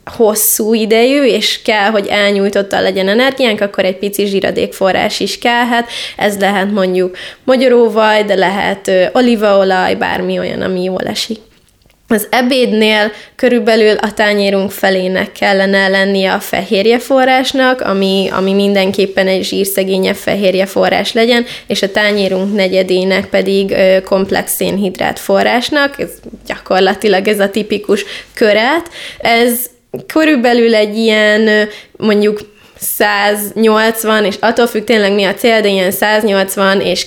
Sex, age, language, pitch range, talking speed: female, 20-39, Hungarian, 195-235 Hz, 125 wpm